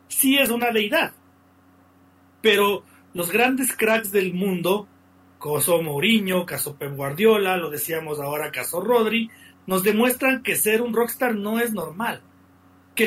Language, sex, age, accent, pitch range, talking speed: Spanish, male, 40-59, Mexican, 150-225 Hz, 135 wpm